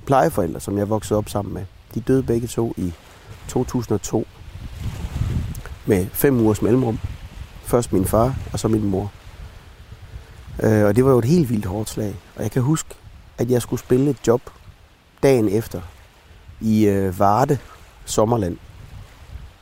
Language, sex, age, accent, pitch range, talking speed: Danish, male, 30-49, native, 95-115 Hz, 145 wpm